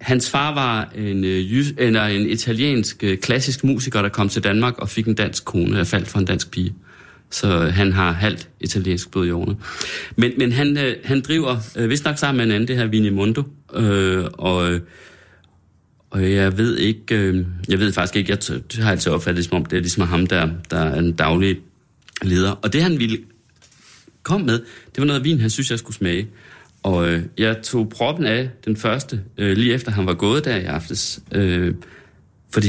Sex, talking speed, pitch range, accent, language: male, 200 wpm, 90-115 Hz, native, Danish